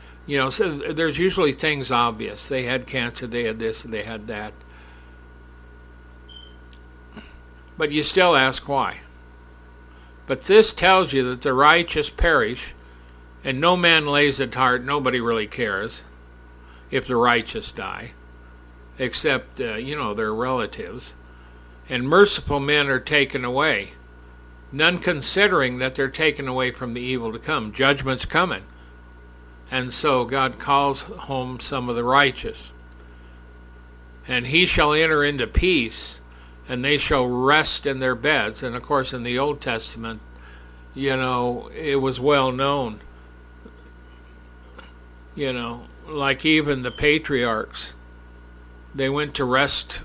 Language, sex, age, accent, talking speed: English, male, 60-79, American, 135 wpm